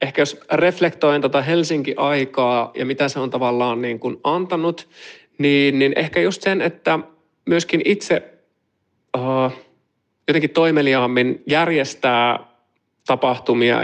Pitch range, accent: 125-170 Hz, native